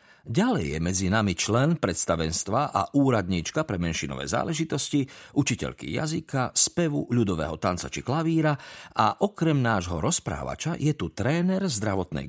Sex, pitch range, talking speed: male, 95-140 Hz, 125 wpm